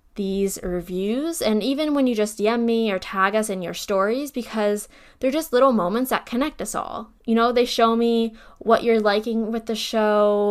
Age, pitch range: 10-29, 190-235 Hz